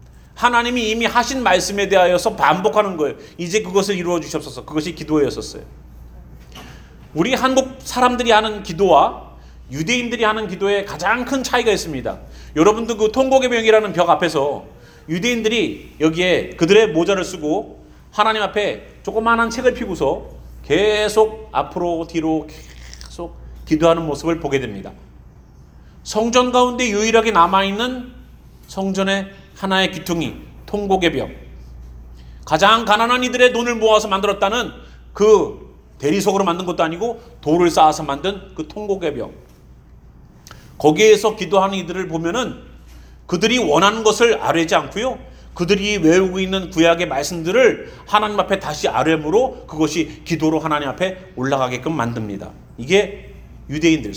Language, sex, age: English, male, 40-59